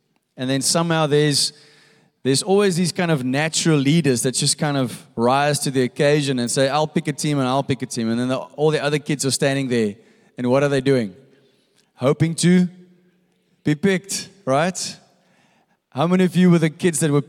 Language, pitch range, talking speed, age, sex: English, 130-170 Hz, 205 wpm, 20-39, male